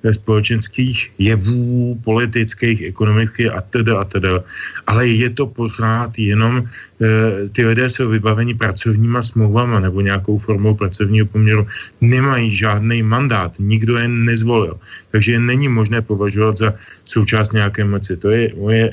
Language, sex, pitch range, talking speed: Slovak, male, 100-115 Hz, 130 wpm